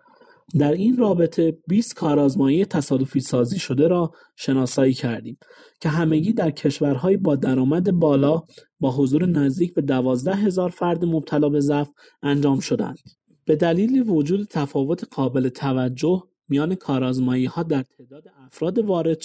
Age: 30-49